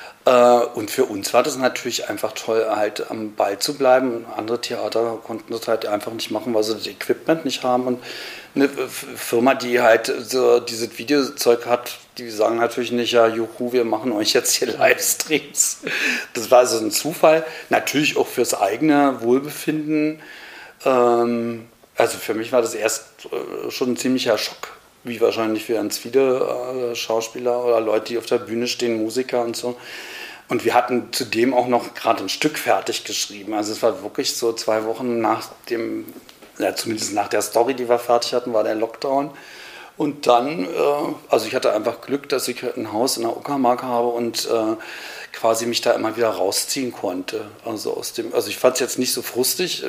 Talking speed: 180 wpm